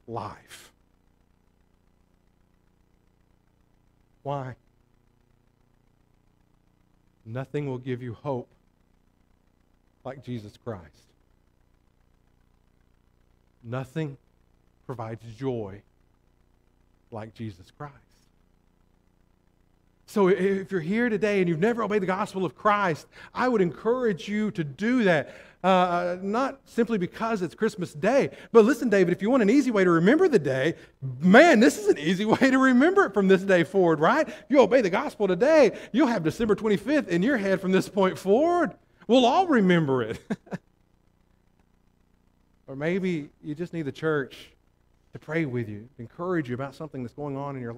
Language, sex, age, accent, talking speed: English, male, 50-69, American, 140 wpm